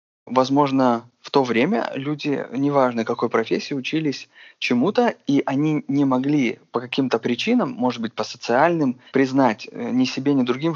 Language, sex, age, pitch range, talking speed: Russian, male, 20-39, 120-160 Hz, 145 wpm